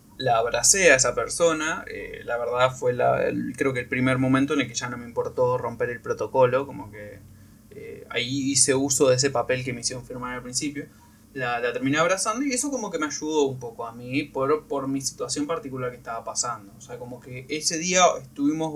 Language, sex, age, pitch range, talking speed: Spanish, male, 20-39, 130-210 Hz, 220 wpm